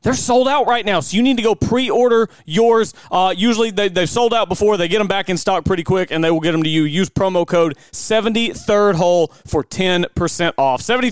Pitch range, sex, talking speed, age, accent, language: 170-220 Hz, male, 235 wpm, 30-49, American, English